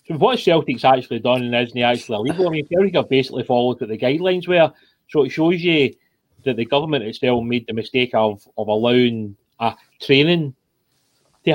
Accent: British